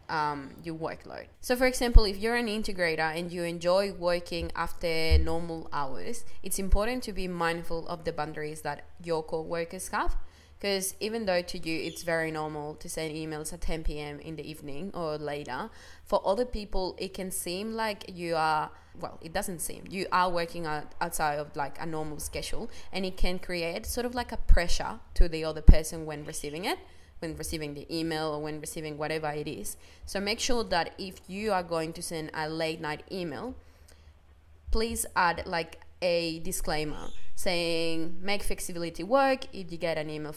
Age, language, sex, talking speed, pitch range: 20-39, English, female, 185 wpm, 155-185 Hz